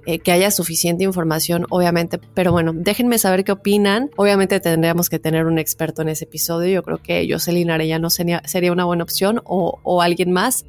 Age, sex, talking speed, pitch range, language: 20-39, female, 190 wpm, 175-215 Hz, Spanish